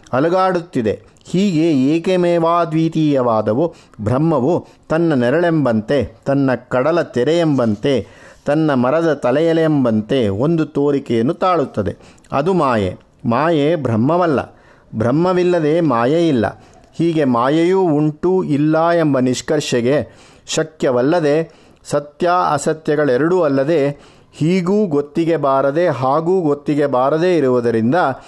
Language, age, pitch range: Kannada, 50-69, 130-165 Hz